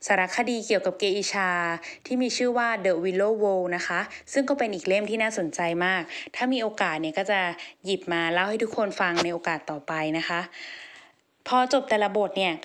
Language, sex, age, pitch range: Thai, female, 20-39, 190-245 Hz